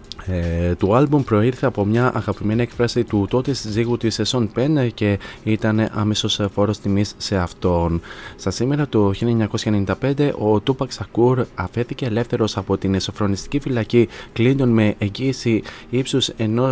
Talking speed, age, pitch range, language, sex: 135 wpm, 20-39, 100-120 Hz, Greek, male